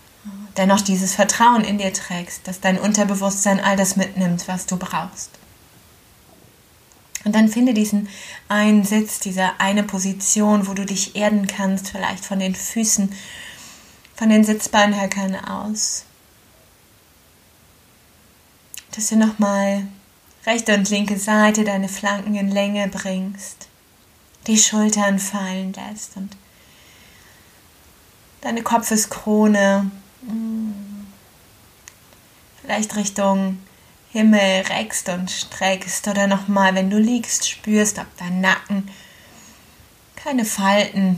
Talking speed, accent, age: 105 wpm, German, 20-39